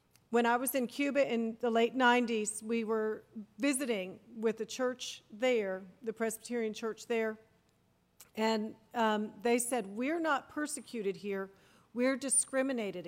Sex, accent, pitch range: female, American, 220-260 Hz